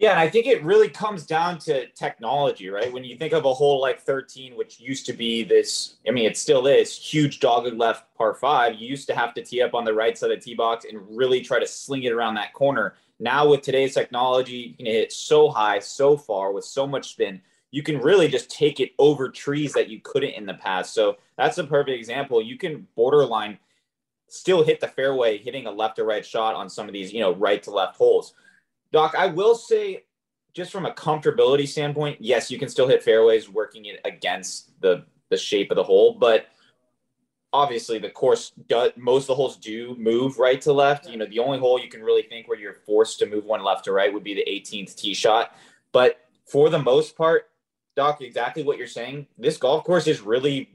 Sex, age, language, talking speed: male, 20-39, English, 225 wpm